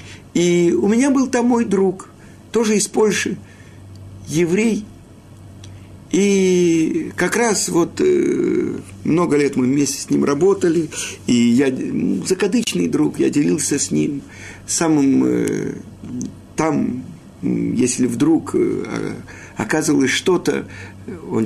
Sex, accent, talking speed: male, native, 105 wpm